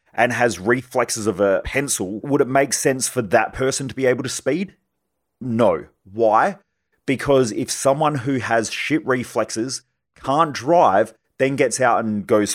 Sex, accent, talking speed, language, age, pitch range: male, Australian, 165 wpm, English, 30-49, 110-140 Hz